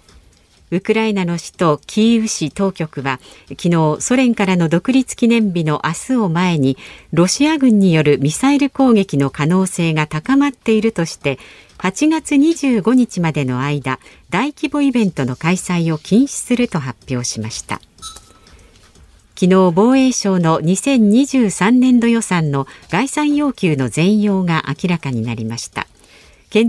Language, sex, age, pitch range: Japanese, female, 50-69, 150-230 Hz